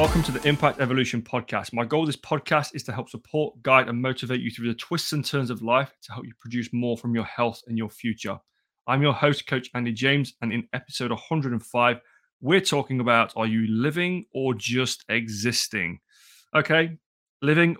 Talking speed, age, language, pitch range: 195 wpm, 20-39, English, 115-145 Hz